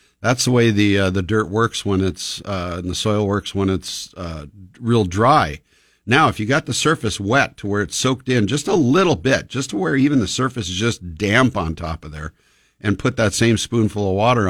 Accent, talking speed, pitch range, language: American, 230 wpm, 95-125 Hz, English